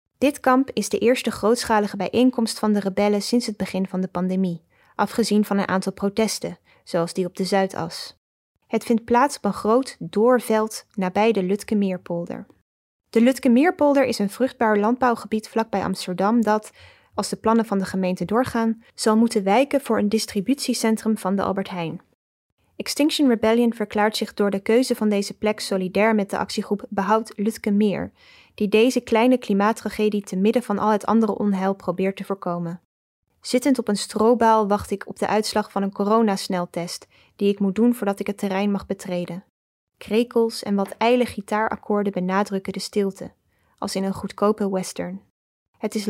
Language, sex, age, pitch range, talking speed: English, female, 20-39, 195-230 Hz, 170 wpm